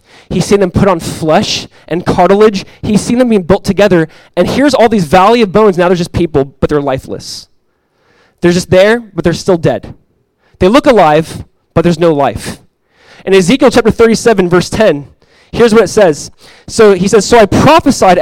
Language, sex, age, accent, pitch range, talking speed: English, male, 20-39, American, 170-225 Hz, 190 wpm